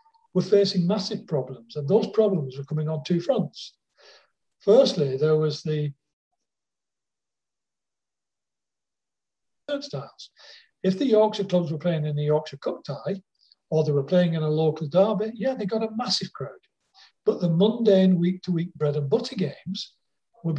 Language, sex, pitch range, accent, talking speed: English, male, 155-205 Hz, British, 150 wpm